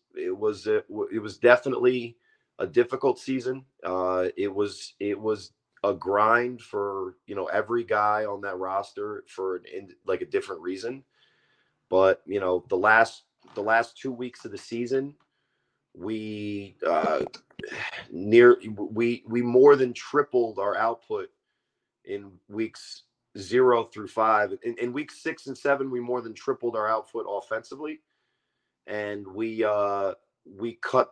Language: English